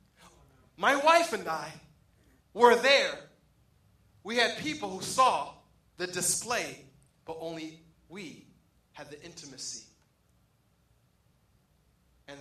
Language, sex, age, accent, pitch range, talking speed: English, male, 30-49, American, 175-250 Hz, 95 wpm